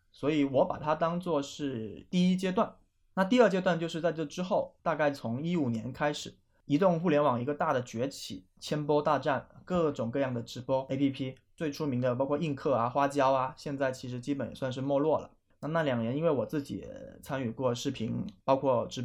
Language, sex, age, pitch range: Chinese, male, 20-39, 125-160 Hz